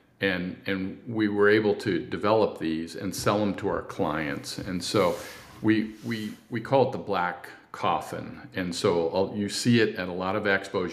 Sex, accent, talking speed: male, American, 190 wpm